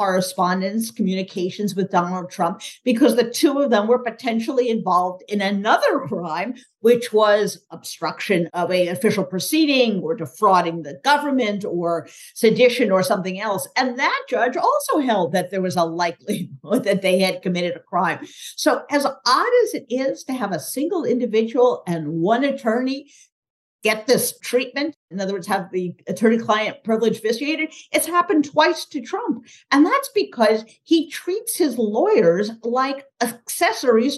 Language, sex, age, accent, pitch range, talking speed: English, female, 50-69, American, 190-280 Hz, 155 wpm